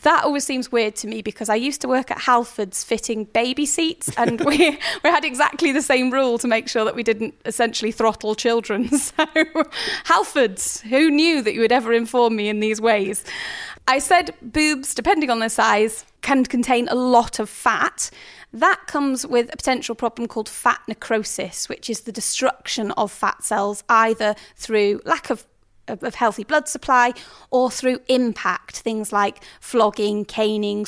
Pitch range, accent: 220-280 Hz, British